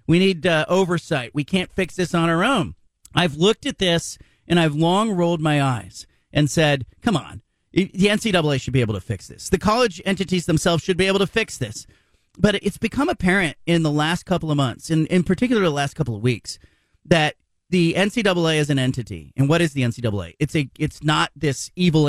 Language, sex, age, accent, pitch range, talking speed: English, male, 40-59, American, 135-180 Hz, 215 wpm